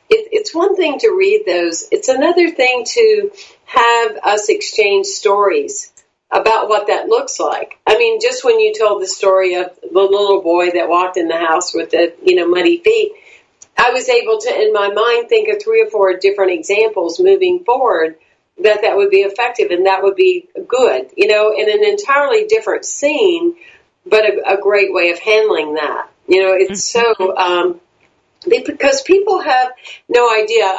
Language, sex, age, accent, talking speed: English, female, 50-69, American, 180 wpm